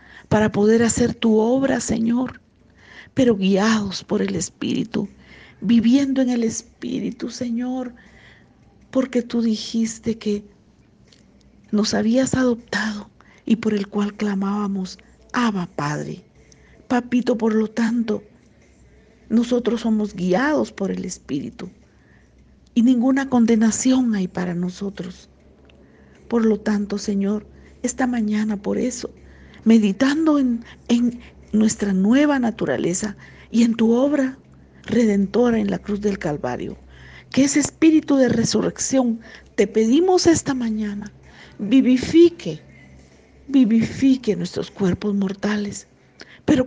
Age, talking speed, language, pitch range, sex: 50-69, 110 wpm, Spanish, 205-245 Hz, female